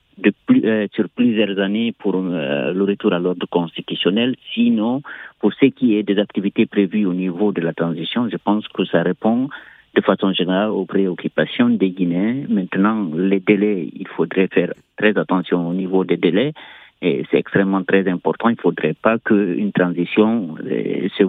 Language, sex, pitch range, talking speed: French, male, 90-105 Hz, 175 wpm